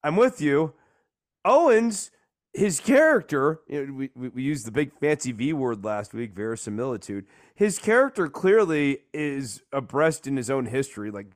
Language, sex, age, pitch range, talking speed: English, male, 30-49, 125-165 Hz, 155 wpm